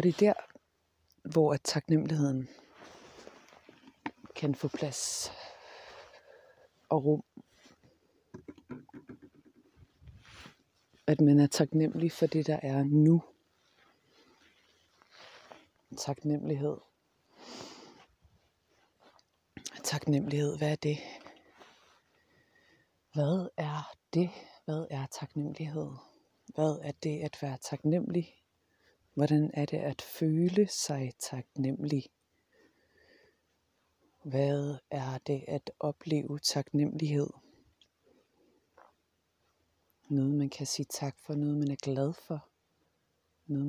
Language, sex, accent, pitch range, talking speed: Danish, female, native, 140-155 Hz, 85 wpm